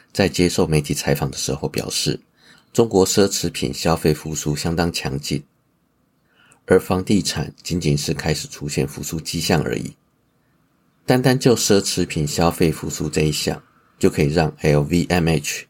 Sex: male